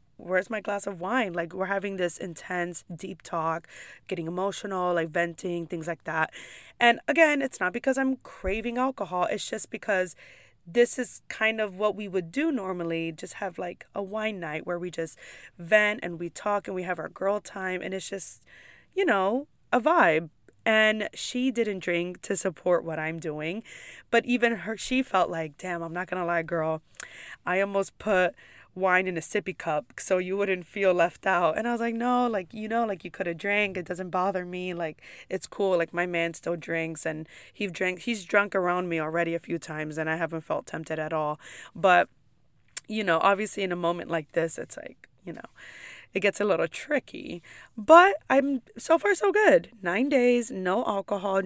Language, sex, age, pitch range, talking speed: English, female, 20-39, 170-215 Hz, 200 wpm